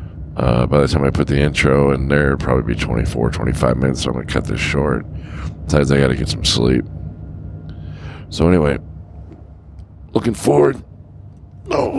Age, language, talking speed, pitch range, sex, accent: 40-59, English, 165 wpm, 70-90 Hz, male, American